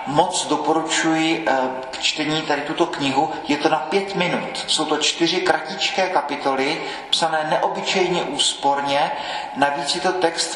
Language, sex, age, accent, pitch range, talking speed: Czech, male, 40-59, native, 135-165 Hz, 135 wpm